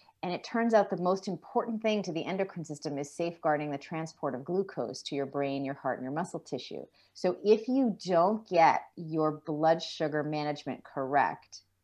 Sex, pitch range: female, 140-165 Hz